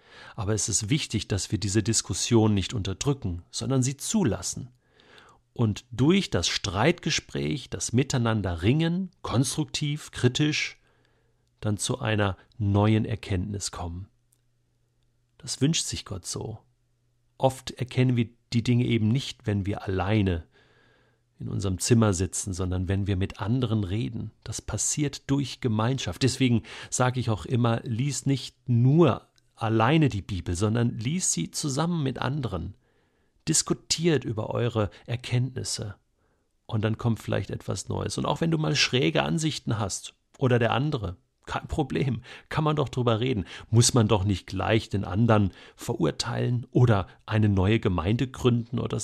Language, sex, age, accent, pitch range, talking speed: German, male, 40-59, German, 105-130 Hz, 140 wpm